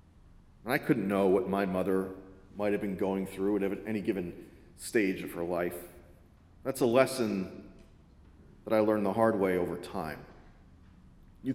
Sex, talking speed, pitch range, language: male, 160 wpm, 95-120 Hz, English